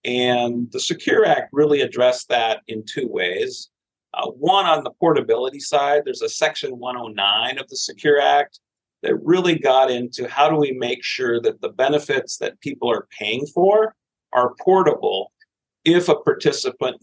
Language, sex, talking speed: English, male, 160 wpm